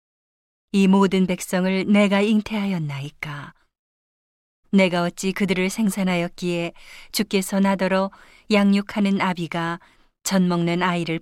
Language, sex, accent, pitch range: Korean, female, native, 170-200 Hz